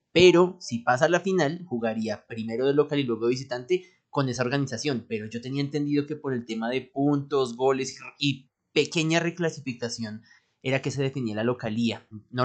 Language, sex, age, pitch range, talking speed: Spanish, male, 30-49, 115-150 Hz, 180 wpm